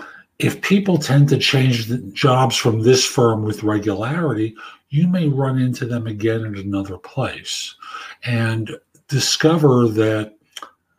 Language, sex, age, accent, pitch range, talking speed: English, male, 50-69, American, 115-150 Hz, 130 wpm